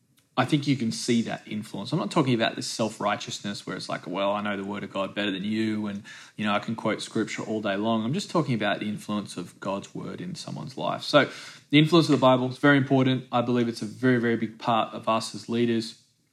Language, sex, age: English, male, 20-39